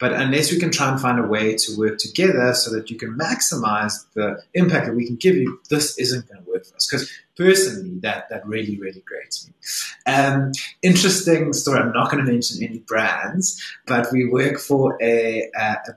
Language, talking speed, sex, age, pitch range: English, 210 wpm, male, 30-49, 115-160 Hz